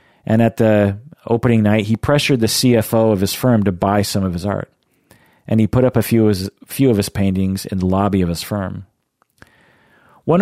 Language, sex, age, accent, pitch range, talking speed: English, male, 40-59, American, 95-120 Hz, 200 wpm